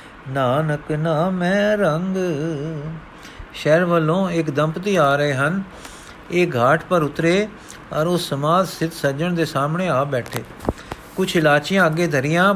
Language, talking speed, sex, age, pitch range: Punjabi, 135 wpm, male, 50-69, 145-175 Hz